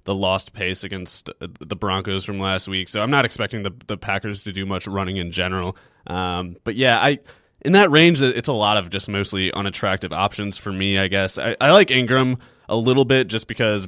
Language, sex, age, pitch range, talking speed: English, male, 20-39, 95-115 Hz, 215 wpm